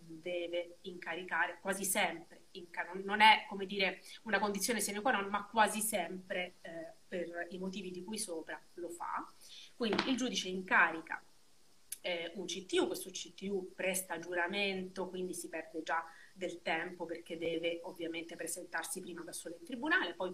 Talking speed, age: 155 wpm, 30-49